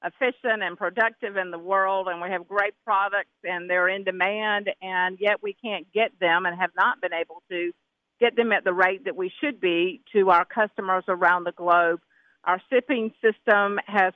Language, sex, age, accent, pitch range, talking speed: English, female, 50-69, American, 180-220 Hz, 195 wpm